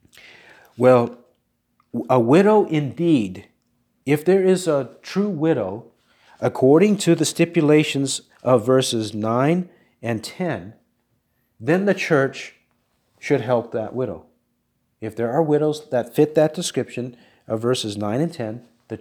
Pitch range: 120-160 Hz